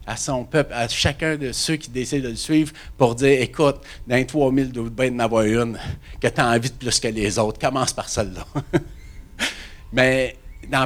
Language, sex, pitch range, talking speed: French, male, 115-145 Hz, 190 wpm